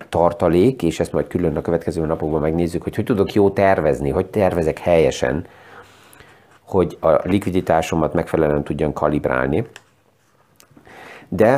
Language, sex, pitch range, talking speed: Hungarian, male, 80-100 Hz, 125 wpm